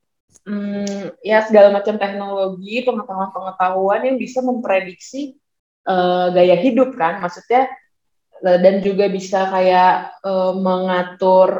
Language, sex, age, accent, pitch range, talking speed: Indonesian, female, 20-39, native, 195-255 Hz, 105 wpm